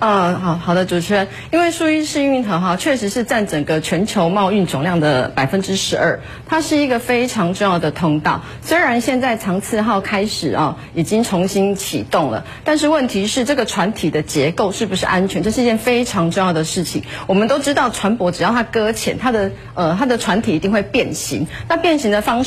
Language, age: Chinese, 30-49